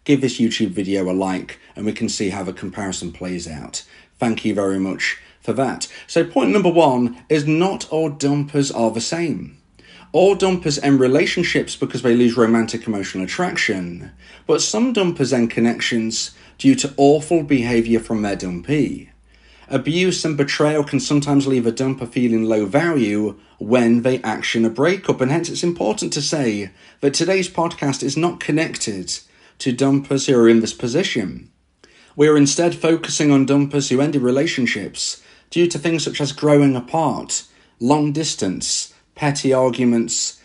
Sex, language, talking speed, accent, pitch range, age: male, English, 160 wpm, British, 115-155 Hz, 40-59